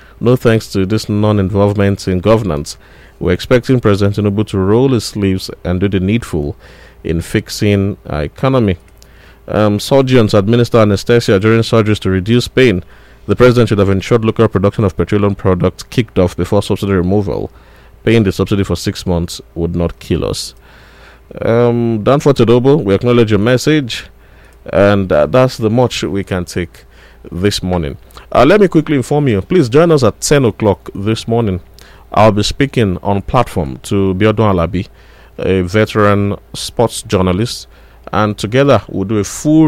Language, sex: English, male